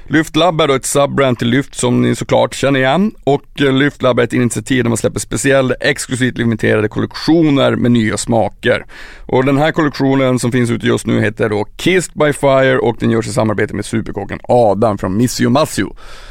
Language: Swedish